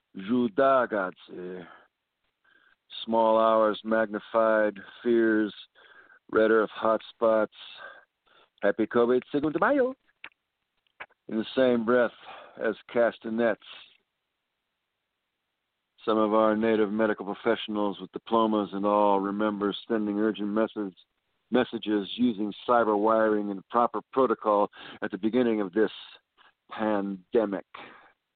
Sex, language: male, English